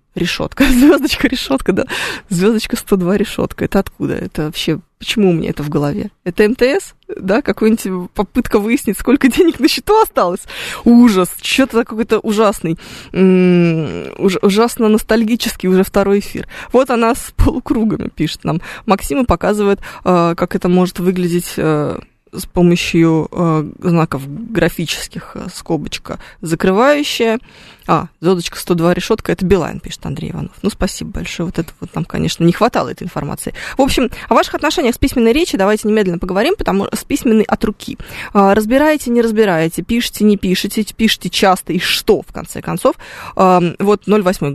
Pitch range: 180-235 Hz